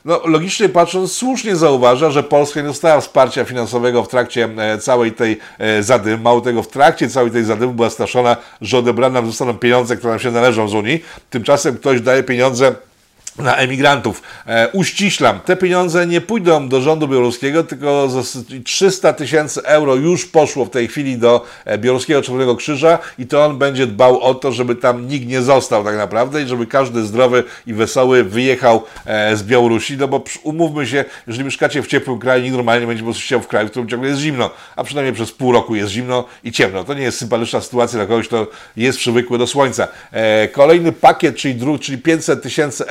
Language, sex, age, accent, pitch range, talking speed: Polish, male, 50-69, native, 120-140 Hz, 195 wpm